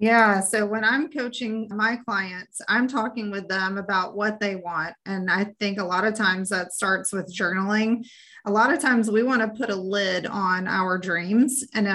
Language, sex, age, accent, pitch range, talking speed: English, female, 30-49, American, 195-225 Hz, 200 wpm